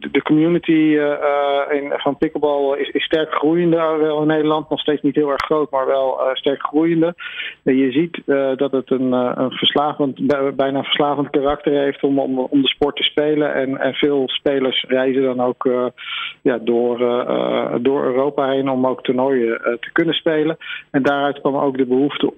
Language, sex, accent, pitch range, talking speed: Dutch, male, Dutch, 125-145 Hz, 190 wpm